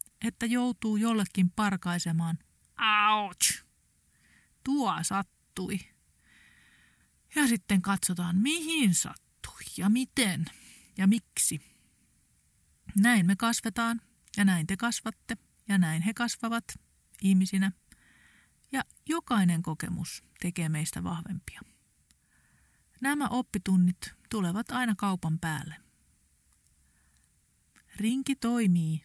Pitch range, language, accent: 160-230 Hz, Finnish, native